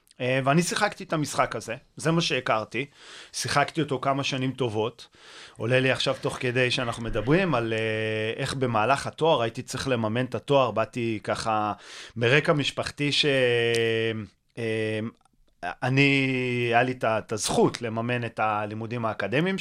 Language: Hebrew